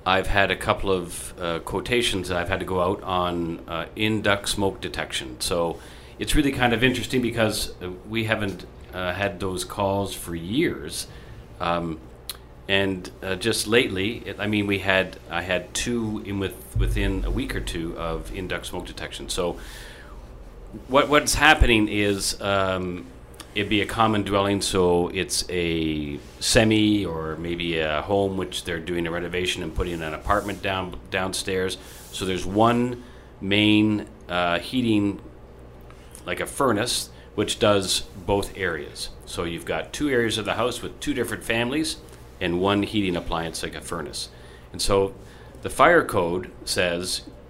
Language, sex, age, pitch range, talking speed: English, male, 40-59, 85-105 Hz, 160 wpm